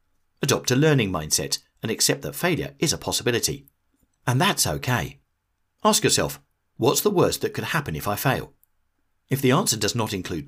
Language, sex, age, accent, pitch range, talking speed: English, male, 40-59, British, 90-135 Hz, 180 wpm